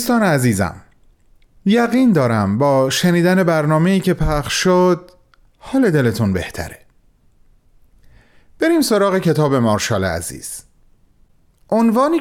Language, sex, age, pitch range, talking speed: Persian, male, 30-49, 125-205 Hz, 95 wpm